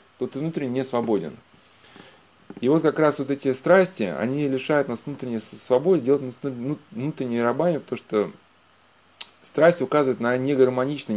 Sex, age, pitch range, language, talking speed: male, 20-39, 120-155 Hz, Russian, 140 wpm